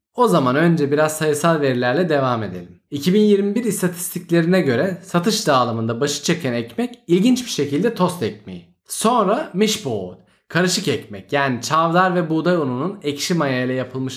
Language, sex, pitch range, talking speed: Turkish, male, 125-185 Hz, 140 wpm